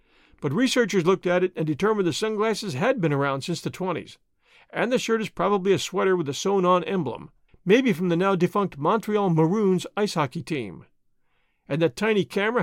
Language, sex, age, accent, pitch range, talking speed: English, male, 50-69, American, 165-215 Hz, 185 wpm